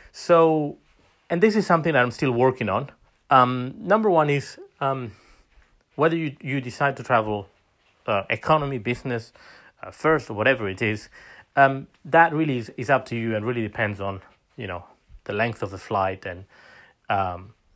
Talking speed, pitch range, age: 170 wpm, 110-140 Hz, 30-49